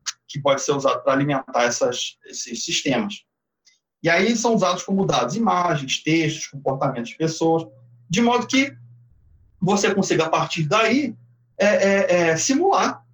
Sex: male